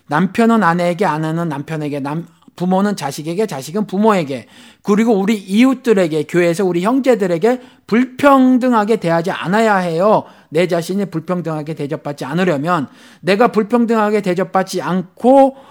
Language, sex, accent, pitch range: Korean, male, native, 165-220 Hz